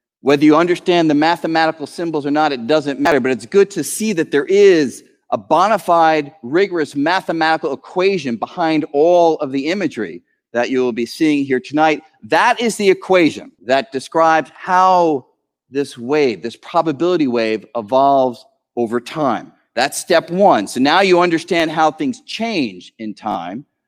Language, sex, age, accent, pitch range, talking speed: English, male, 40-59, American, 140-205 Hz, 160 wpm